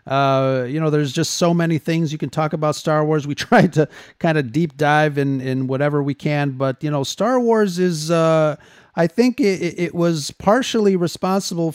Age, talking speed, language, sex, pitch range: 40-59, 205 wpm, English, male, 125-155 Hz